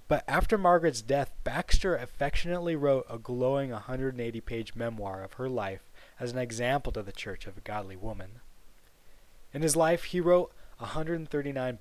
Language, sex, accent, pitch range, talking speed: English, male, American, 110-140 Hz, 150 wpm